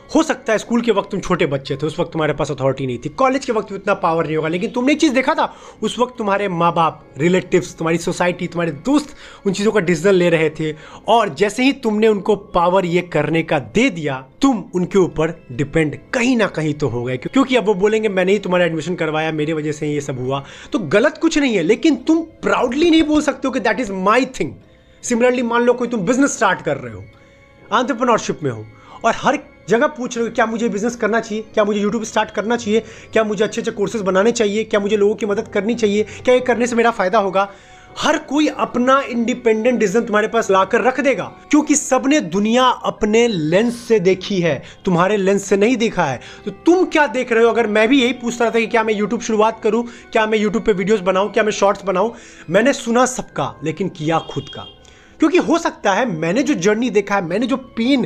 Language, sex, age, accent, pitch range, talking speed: Hindi, male, 30-49, native, 180-245 Hz, 230 wpm